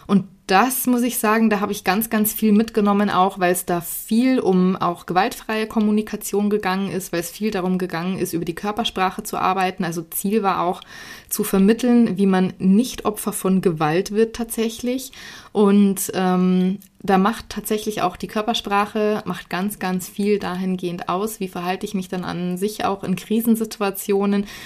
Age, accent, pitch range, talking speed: 20-39, German, 185-230 Hz, 175 wpm